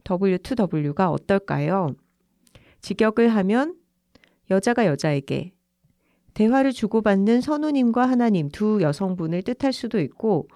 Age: 40-59